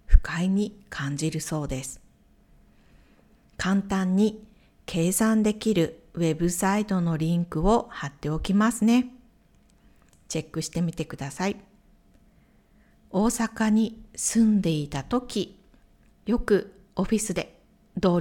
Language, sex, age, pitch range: Japanese, female, 50-69, 165-220 Hz